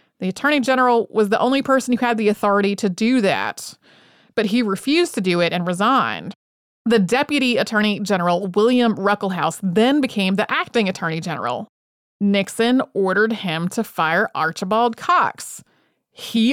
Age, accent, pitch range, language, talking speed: 30-49, American, 190-230 Hz, English, 155 wpm